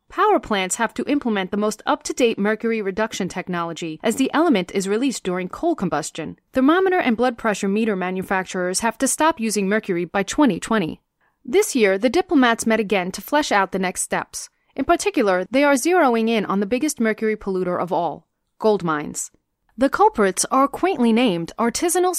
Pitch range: 190-270 Hz